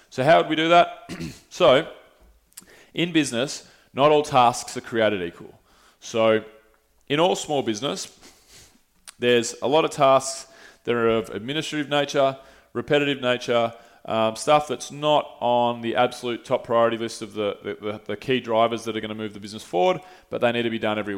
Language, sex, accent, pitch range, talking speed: English, male, Australian, 115-140 Hz, 175 wpm